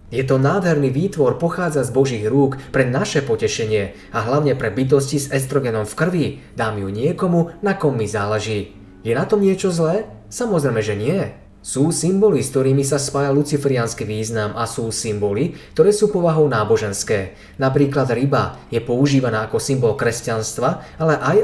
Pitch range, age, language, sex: 115-150 Hz, 20-39, Slovak, male